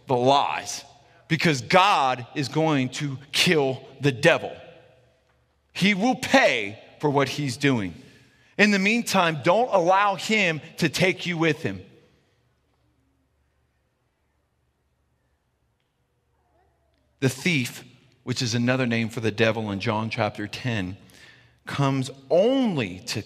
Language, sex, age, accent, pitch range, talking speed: English, male, 40-59, American, 115-185 Hz, 110 wpm